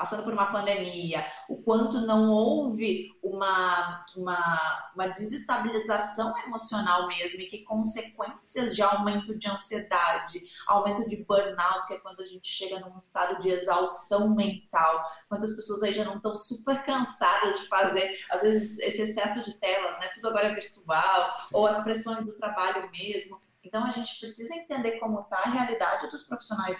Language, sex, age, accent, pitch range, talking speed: Portuguese, female, 20-39, Brazilian, 185-225 Hz, 165 wpm